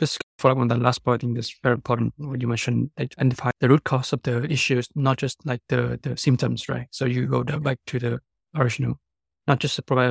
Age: 20-39